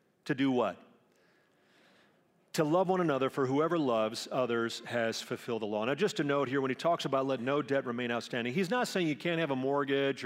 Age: 40-59